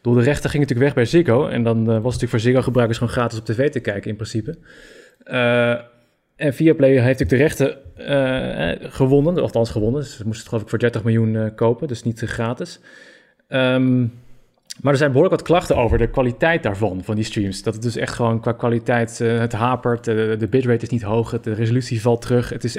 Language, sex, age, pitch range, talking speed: Dutch, male, 20-39, 115-130 Hz, 235 wpm